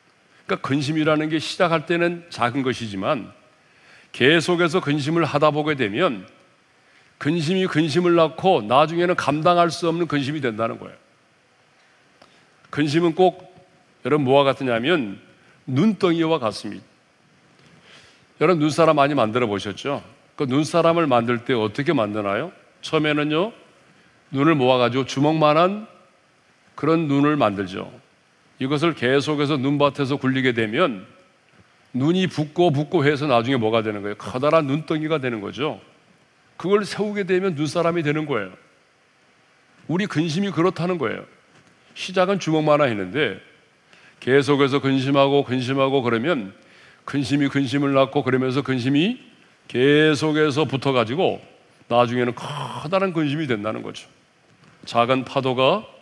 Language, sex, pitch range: Korean, male, 130-170 Hz